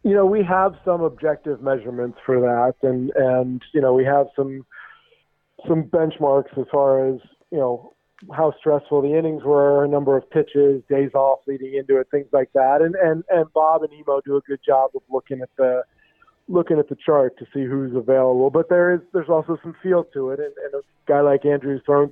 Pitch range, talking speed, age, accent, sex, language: 130-155 Hz, 210 wpm, 40-59, American, male, English